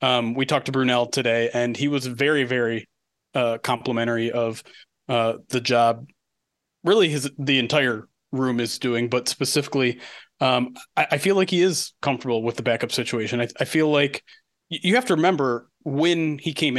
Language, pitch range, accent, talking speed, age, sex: English, 130-170 Hz, American, 175 wpm, 30-49, male